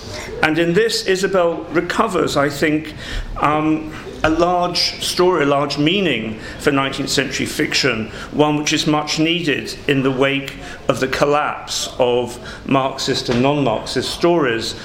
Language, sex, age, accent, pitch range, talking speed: English, male, 50-69, British, 120-150 Hz, 135 wpm